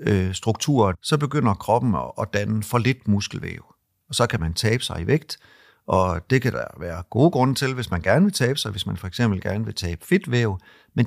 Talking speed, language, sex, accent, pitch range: 210 wpm, Danish, male, native, 95-125 Hz